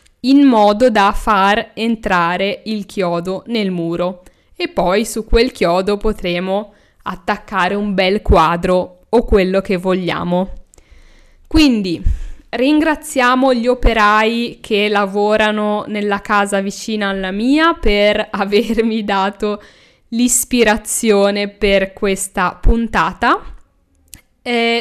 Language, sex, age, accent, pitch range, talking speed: Italian, female, 10-29, native, 195-240 Hz, 100 wpm